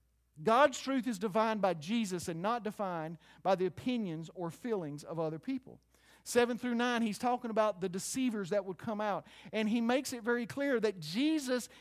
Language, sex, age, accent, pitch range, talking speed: English, male, 50-69, American, 190-250 Hz, 190 wpm